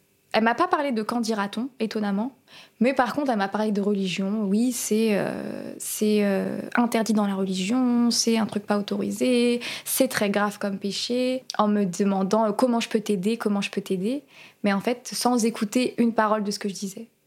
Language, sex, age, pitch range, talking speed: French, female, 20-39, 200-230 Hz, 210 wpm